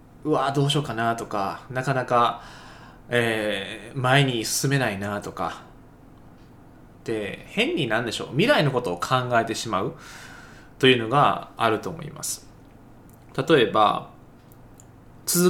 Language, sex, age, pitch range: Japanese, male, 20-39, 115-155 Hz